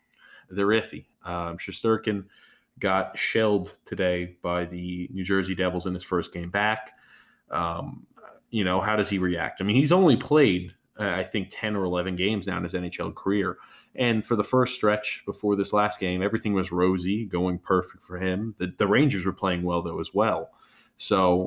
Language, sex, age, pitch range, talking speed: English, male, 20-39, 90-105 Hz, 185 wpm